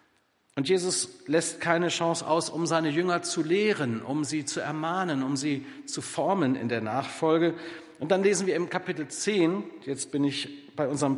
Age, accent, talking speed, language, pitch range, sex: 50-69, German, 180 wpm, German, 130-165 Hz, male